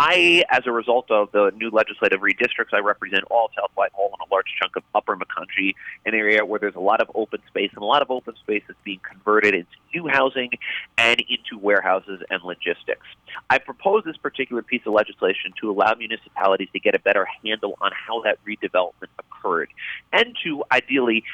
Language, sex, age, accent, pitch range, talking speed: English, male, 30-49, American, 110-140 Hz, 195 wpm